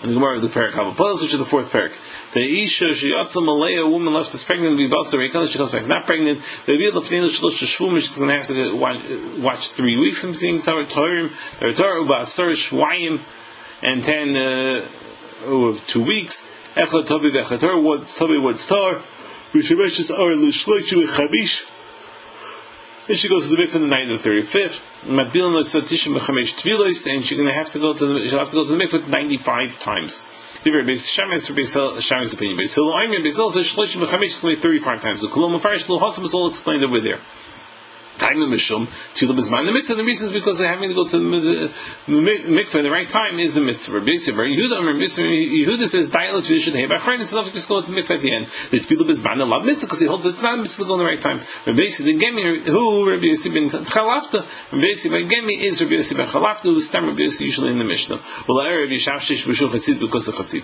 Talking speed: 155 wpm